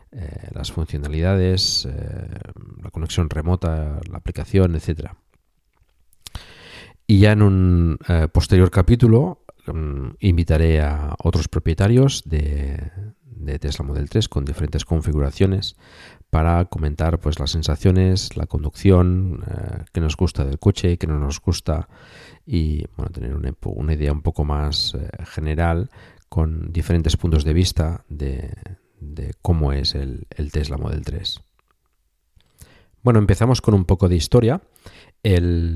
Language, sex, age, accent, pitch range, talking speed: Spanish, male, 50-69, Spanish, 80-95 Hz, 130 wpm